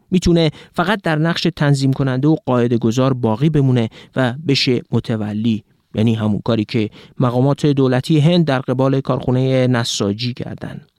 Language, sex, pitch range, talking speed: Persian, male, 120-160 Hz, 140 wpm